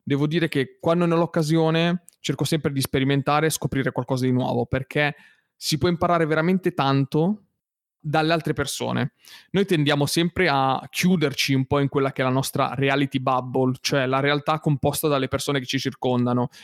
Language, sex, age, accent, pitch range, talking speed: Italian, male, 20-39, native, 135-160 Hz, 175 wpm